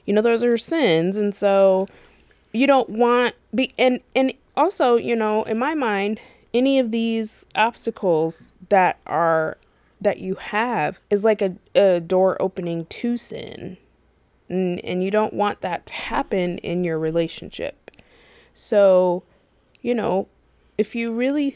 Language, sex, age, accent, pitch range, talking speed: English, female, 20-39, American, 175-220 Hz, 150 wpm